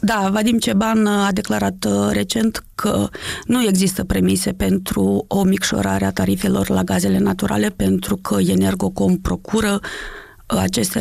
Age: 30-49